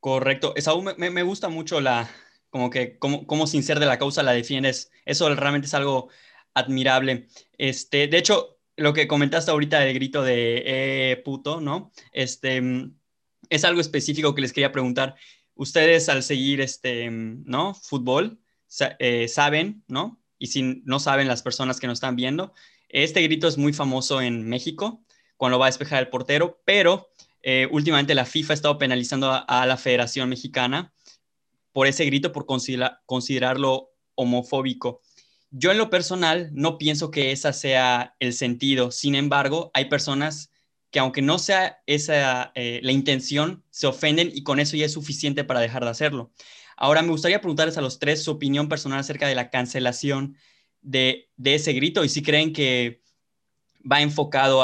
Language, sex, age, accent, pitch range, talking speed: Spanish, male, 20-39, Mexican, 130-150 Hz, 170 wpm